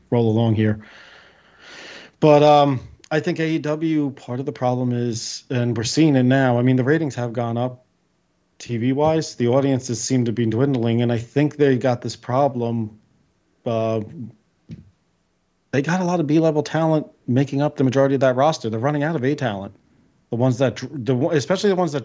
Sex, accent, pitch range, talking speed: male, American, 115-150 Hz, 190 wpm